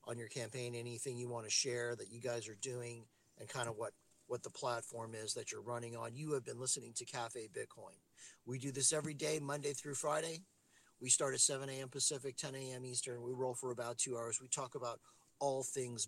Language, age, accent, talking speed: English, 50-69, American, 225 wpm